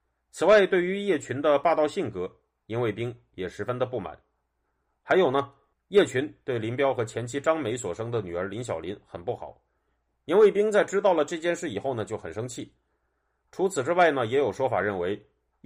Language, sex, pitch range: Chinese, male, 110-160 Hz